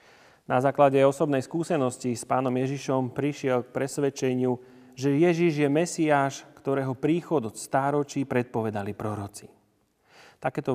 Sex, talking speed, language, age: male, 115 wpm, Slovak, 30-49